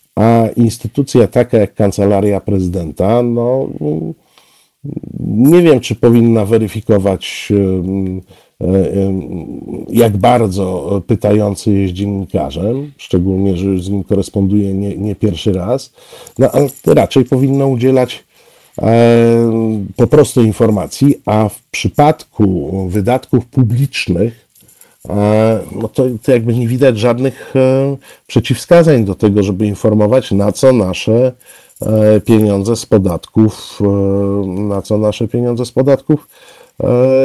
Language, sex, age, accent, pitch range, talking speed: Polish, male, 50-69, native, 100-130 Hz, 110 wpm